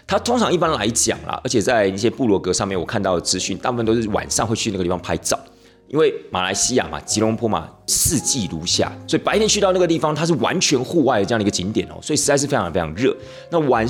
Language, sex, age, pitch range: Chinese, male, 30-49, 95-140 Hz